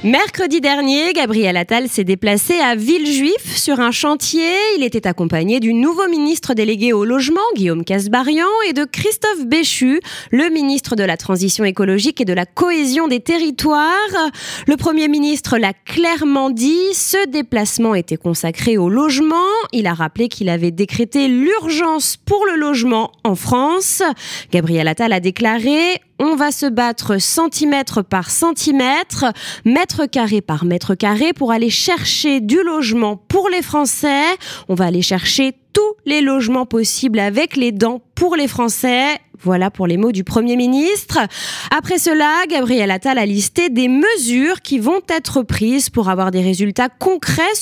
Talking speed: 155 wpm